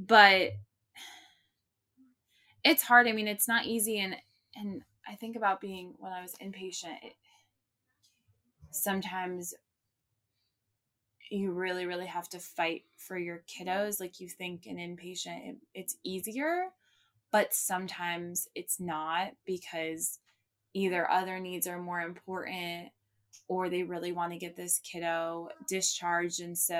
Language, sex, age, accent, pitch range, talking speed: English, female, 20-39, American, 170-195 Hz, 135 wpm